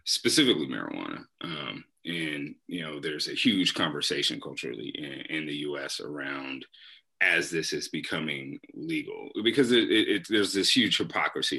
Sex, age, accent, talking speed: male, 30-49, American, 150 wpm